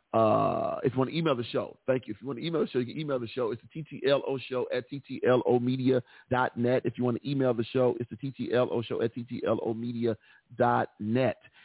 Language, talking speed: English, 200 wpm